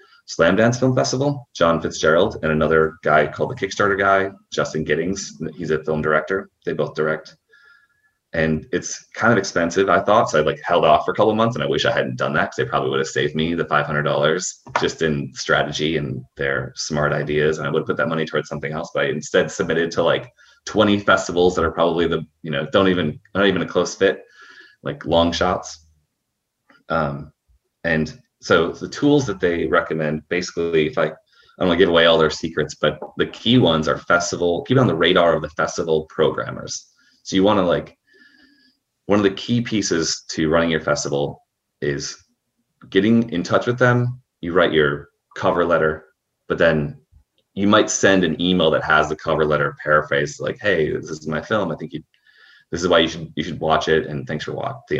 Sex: male